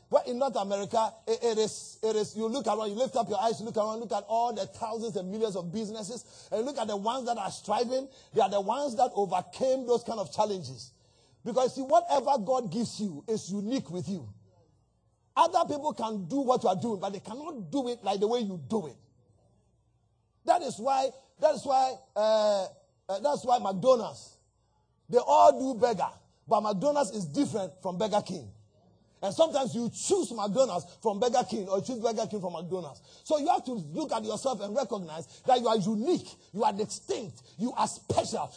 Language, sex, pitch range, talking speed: English, male, 195-260 Hz, 205 wpm